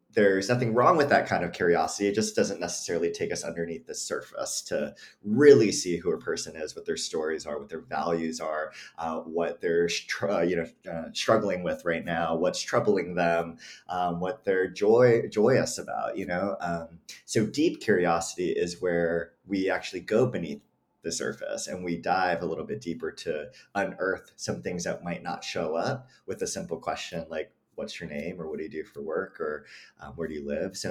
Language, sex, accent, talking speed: English, male, American, 200 wpm